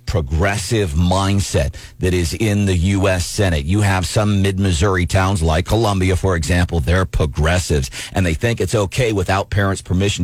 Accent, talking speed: American, 160 wpm